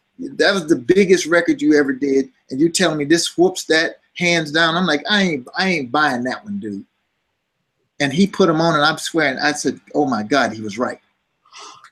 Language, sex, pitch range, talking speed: English, male, 140-205 Hz, 215 wpm